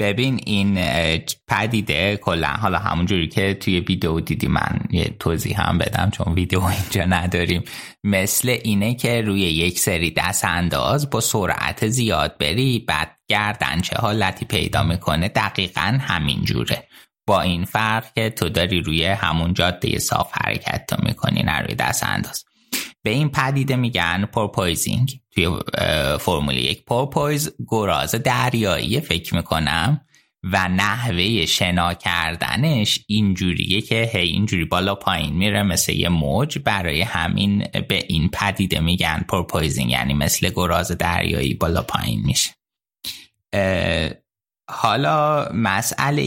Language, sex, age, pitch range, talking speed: Persian, male, 20-39, 90-115 Hz, 125 wpm